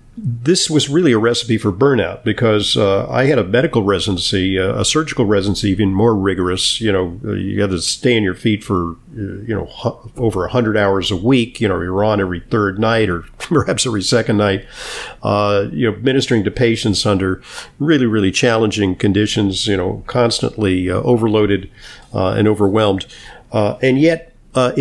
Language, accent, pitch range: English, American, 100-125 Hz